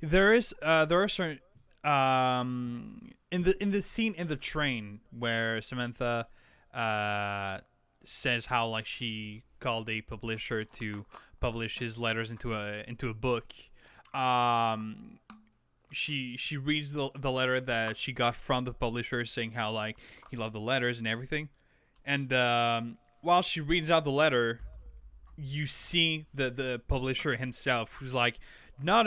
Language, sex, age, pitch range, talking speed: English, male, 20-39, 120-155 Hz, 150 wpm